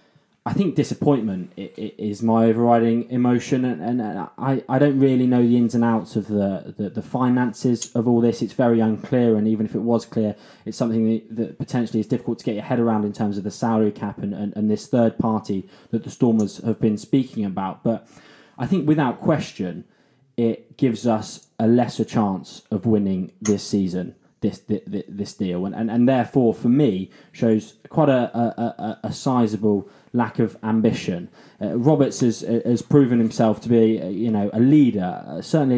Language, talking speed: English, 180 wpm